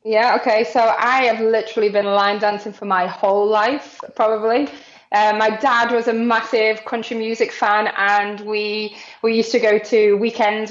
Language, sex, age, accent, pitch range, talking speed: English, female, 20-39, British, 205-235 Hz, 175 wpm